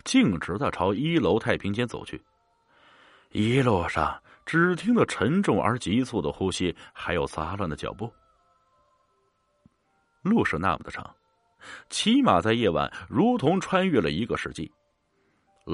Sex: male